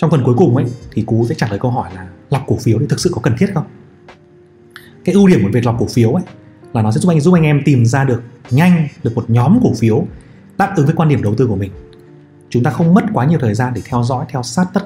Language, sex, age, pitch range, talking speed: Vietnamese, male, 20-39, 115-145 Hz, 295 wpm